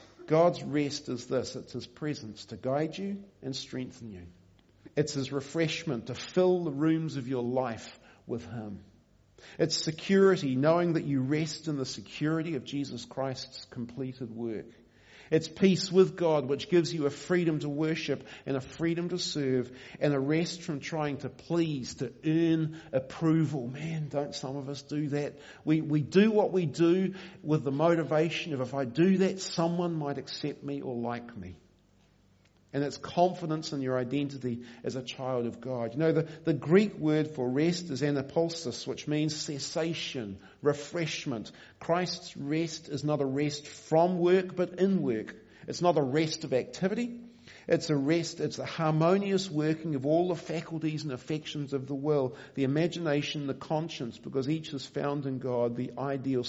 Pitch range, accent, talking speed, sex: 130-165 Hz, Australian, 175 wpm, male